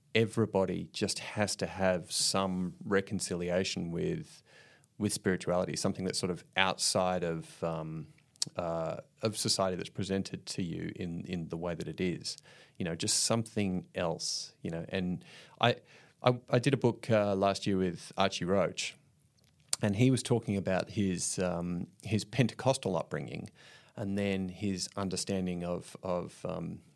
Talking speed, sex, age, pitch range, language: 150 wpm, male, 30-49, 90-115 Hz, English